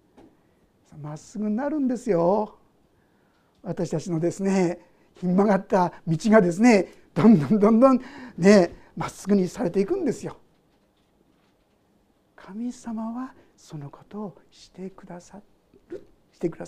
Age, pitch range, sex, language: 60-79, 180-285 Hz, male, Japanese